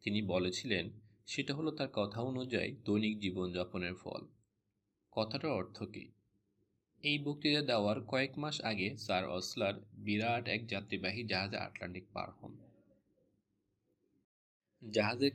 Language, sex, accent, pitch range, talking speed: Bengali, male, native, 100-120 Hz, 110 wpm